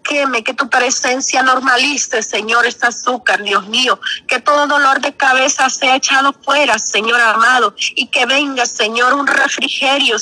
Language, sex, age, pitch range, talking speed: Spanish, female, 30-49, 240-285 Hz, 155 wpm